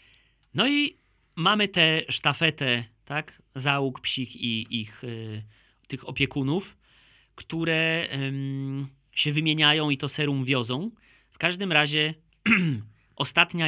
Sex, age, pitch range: male, 30-49, 125-160 Hz